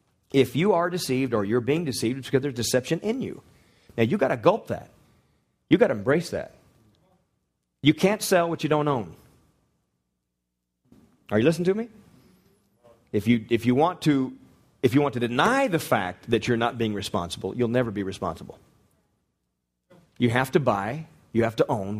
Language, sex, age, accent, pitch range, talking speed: English, male, 40-59, American, 105-155 Hz, 185 wpm